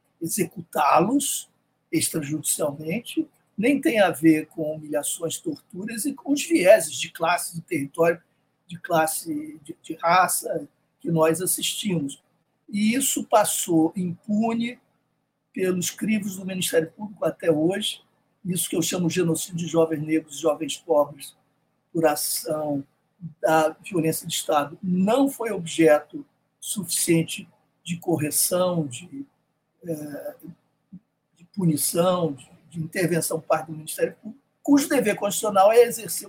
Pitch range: 155-210 Hz